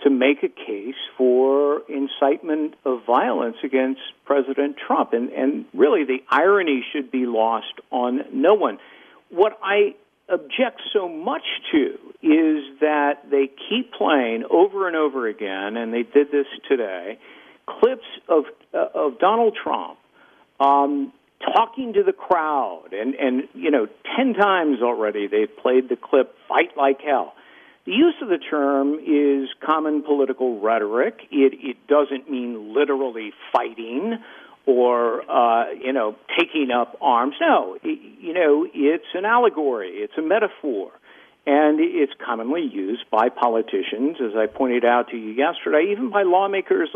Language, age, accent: English, 50-69, American